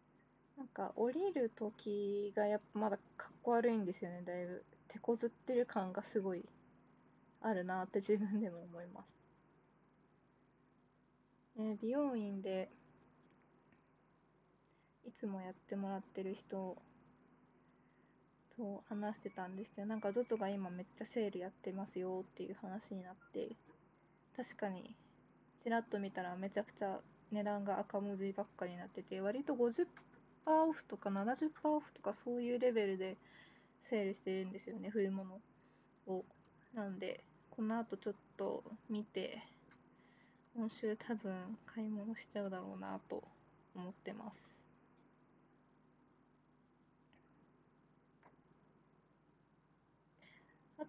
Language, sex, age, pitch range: Japanese, female, 20-39, 190-235 Hz